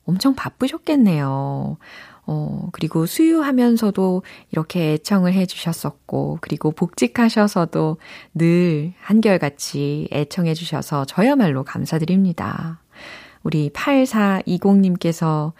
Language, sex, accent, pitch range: Korean, female, native, 155-215 Hz